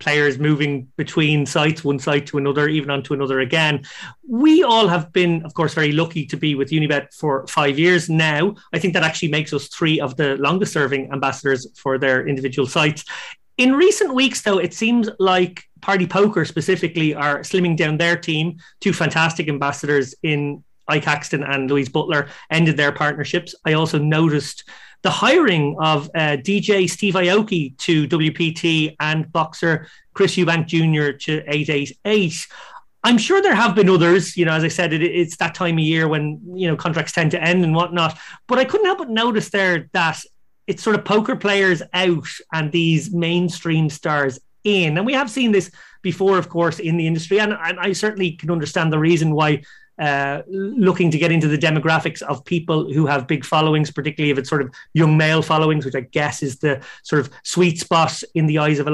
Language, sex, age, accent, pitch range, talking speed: English, male, 30-49, Irish, 150-180 Hz, 190 wpm